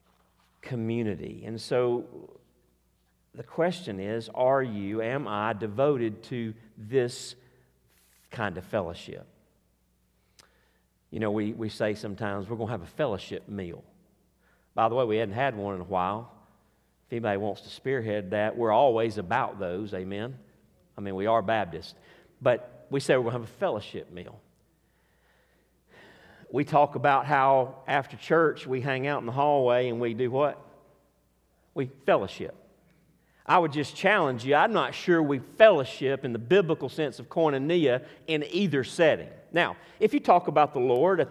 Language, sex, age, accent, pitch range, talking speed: English, male, 50-69, American, 110-155 Hz, 160 wpm